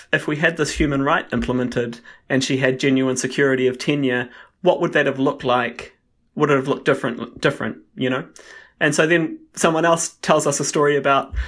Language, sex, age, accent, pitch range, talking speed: English, male, 30-49, Australian, 130-155 Hz, 200 wpm